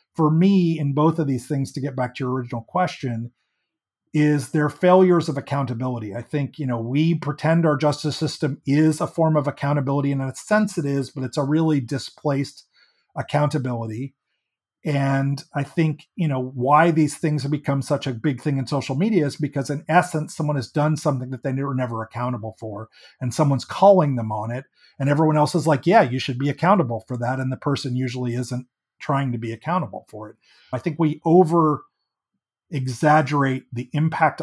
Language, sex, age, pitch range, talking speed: English, male, 40-59, 130-155 Hz, 195 wpm